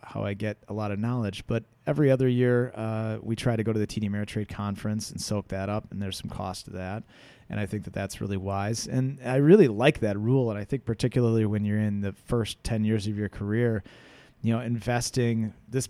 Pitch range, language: 100-120 Hz, English